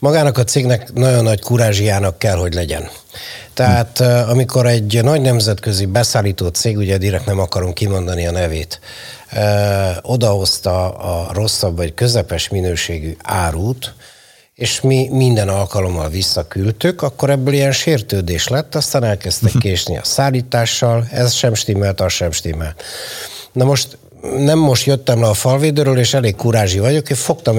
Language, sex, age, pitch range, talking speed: Hungarian, male, 60-79, 95-130 Hz, 140 wpm